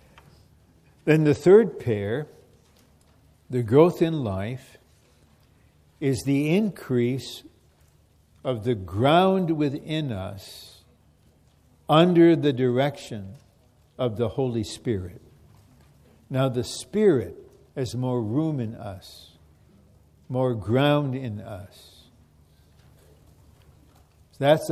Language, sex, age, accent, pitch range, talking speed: English, male, 60-79, American, 90-145 Hz, 85 wpm